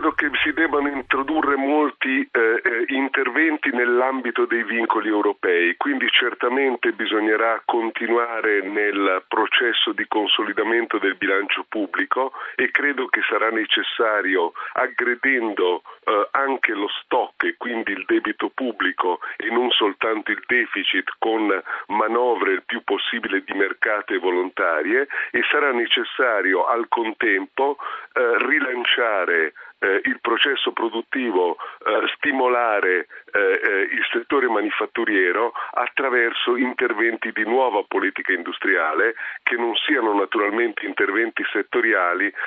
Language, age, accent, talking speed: Italian, 40-59, native, 115 wpm